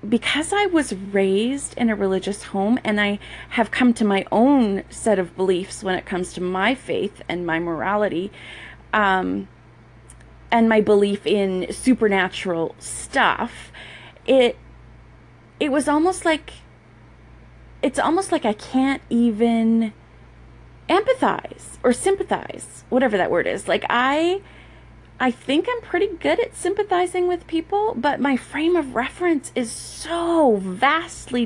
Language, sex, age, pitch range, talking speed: English, female, 30-49, 190-285 Hz, 135 wpm